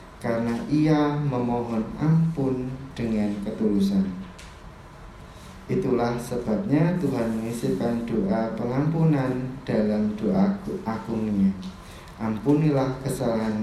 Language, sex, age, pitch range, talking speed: Indonesian, male, 20-39, 105-140 Hz, 75 wpm